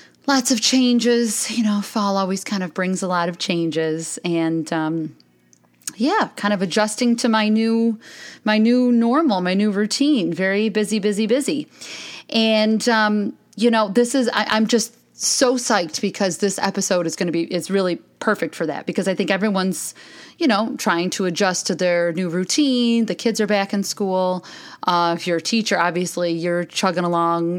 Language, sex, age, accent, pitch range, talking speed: English, female, 30-49, American, 170-220 Hz, 180 wpm